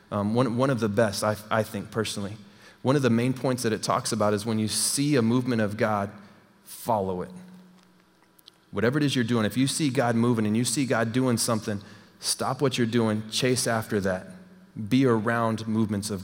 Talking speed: 205 wpm